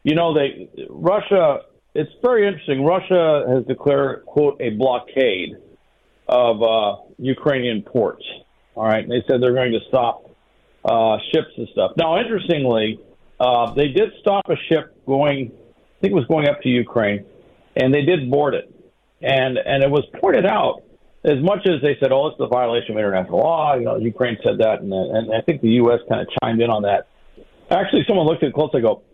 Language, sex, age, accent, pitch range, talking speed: English, male, 50-69, American, 115-145 Hz, 195 wpm